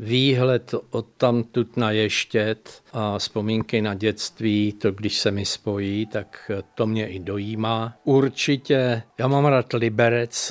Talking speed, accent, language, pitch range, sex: 145 wpm, native, Czech, 110-120 Hz, male